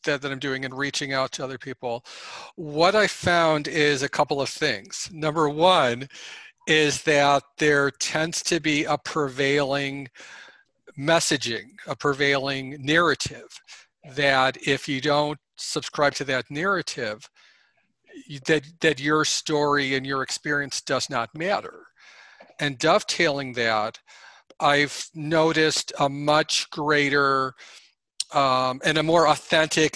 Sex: male